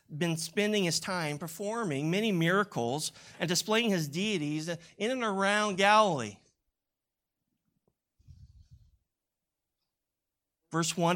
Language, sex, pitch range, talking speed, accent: English, male, 145-175 Hz, 90 wpm, American